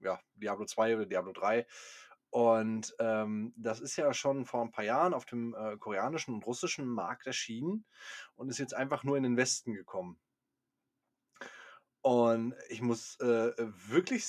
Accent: German